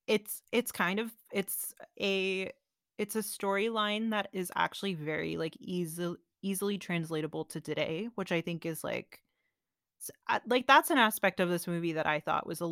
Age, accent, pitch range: 20-39, American, 165-210 Hz